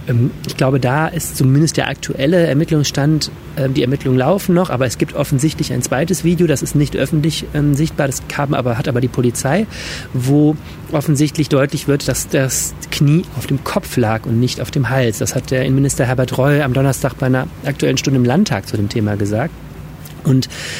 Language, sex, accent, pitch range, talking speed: German, male, German, 130-155 Hz, 185 wpm